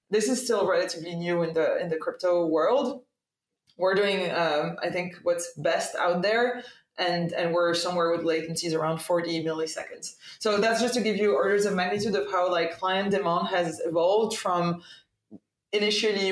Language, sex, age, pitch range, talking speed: English, female, 20-39, 175-210 Hz, 175 wpm